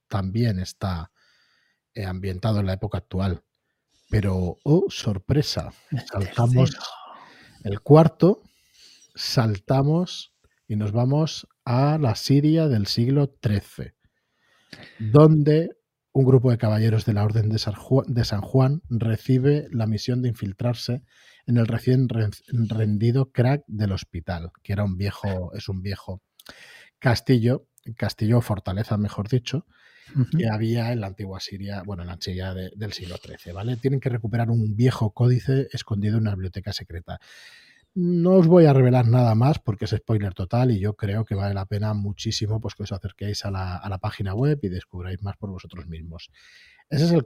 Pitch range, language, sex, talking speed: 100-130 Hz, Spanish, male, 155 wpm